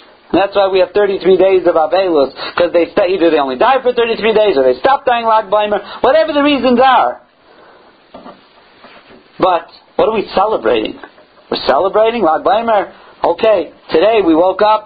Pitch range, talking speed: 210-295 Hz, 165 wpm